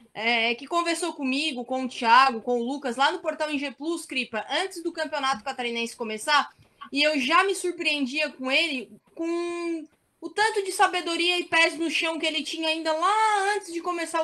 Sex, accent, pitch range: female, Brazilian, 260-320 Hz